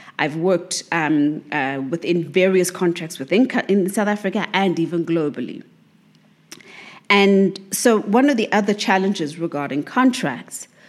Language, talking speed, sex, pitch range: English, 130 wpm, female, 155-195 Hz